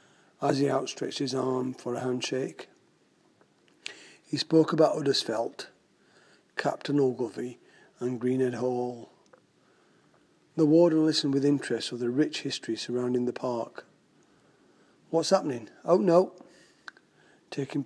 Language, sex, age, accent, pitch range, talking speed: English, male, 40-59, British, 130-150 Hz, 115 wpm